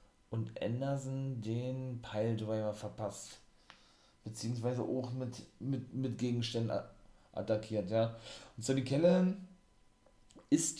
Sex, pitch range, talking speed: male, 105-135 Hz, 100 wpm